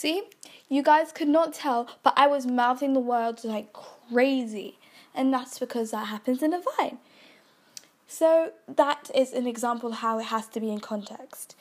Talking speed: 180 wpm